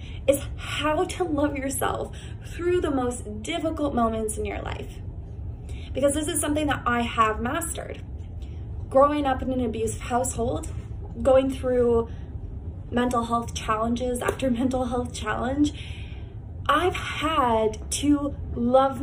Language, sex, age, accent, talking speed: English, female, 20-39, American, 125 wpm